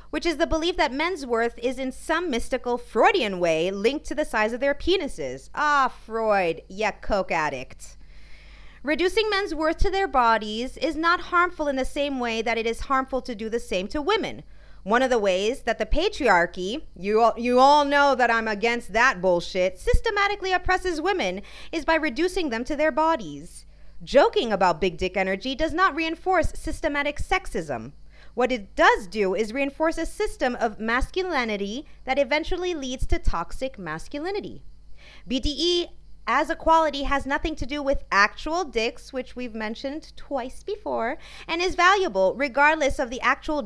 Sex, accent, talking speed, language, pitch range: female, American, 170 wpm, English, 225-325 Hz